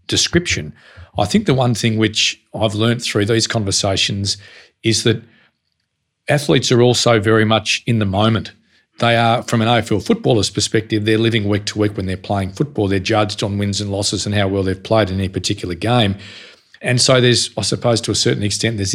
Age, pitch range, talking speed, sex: 40-59, 105-115 Hz, 200 wpm, male